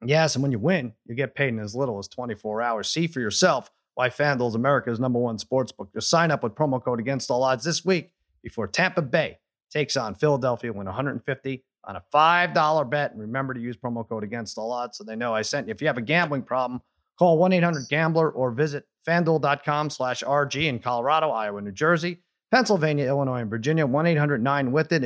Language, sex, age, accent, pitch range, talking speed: English, male, 30-49, American, 125-160 Hz, 205 wpm